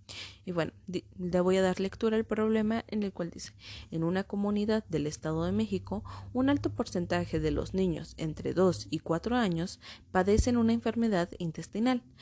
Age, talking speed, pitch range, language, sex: 30-49, 170 wpm, 160-215 Hz, Spanish, female